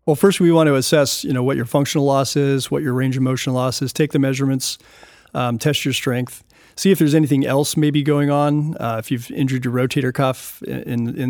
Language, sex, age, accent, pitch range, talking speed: English, male, 40-59, American, 125-145 Hz, 240 wpm